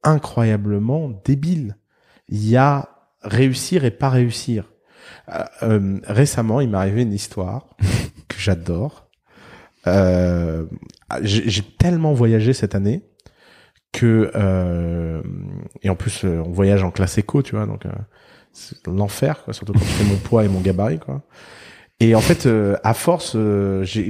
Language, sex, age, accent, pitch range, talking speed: French, male, 30-49, French, 100-130 Hz, 155 wpm